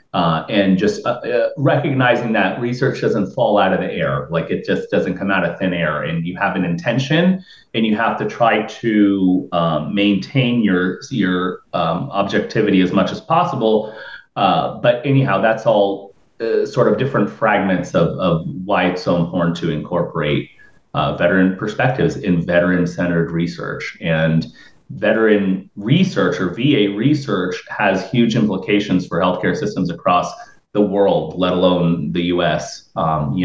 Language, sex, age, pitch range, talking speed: English, male, 30-49, 85-110 Hz, 160 wpm